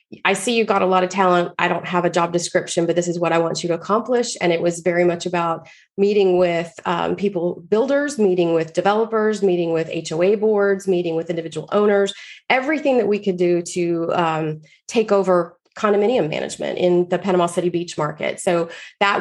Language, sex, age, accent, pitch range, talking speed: English, female, 30-49, American, 170-195 Hz, 200 wpm